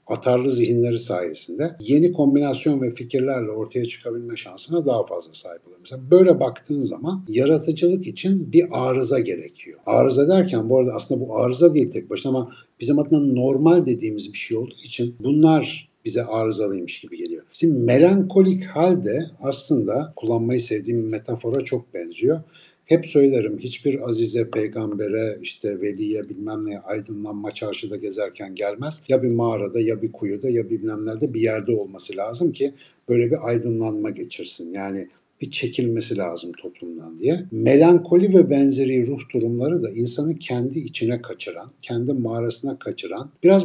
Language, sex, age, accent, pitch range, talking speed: Turkish, male, 60-79, native, 115-160 Hz, 145 wpm